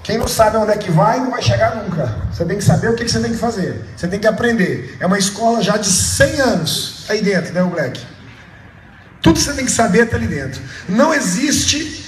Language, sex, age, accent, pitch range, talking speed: Portuguese, male, 40-59, Brazilian, 160-230 Hz, 235 wpm